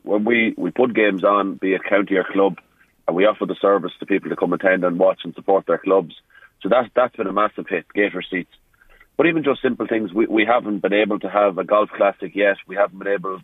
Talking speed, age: 250 wpm, 30-49